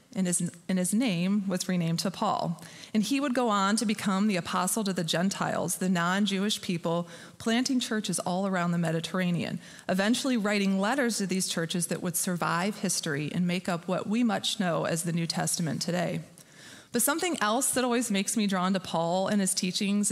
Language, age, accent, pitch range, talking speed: English, 30-49, American, 175-215 Hz, 190 wpm